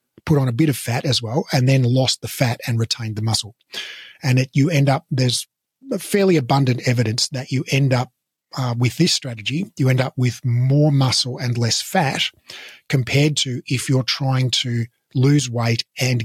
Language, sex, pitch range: English, male, 120-145 Hz